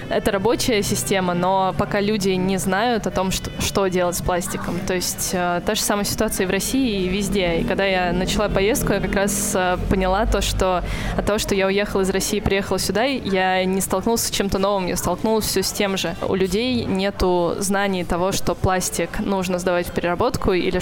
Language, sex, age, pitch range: Russian, female, 20-39, 180-200 Hz